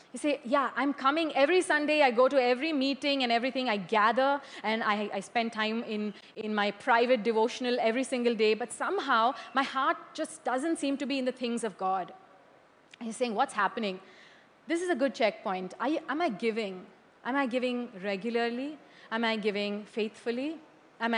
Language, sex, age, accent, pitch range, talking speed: English, female, 30-49, Indian, 210-265 Hz, 185 wpm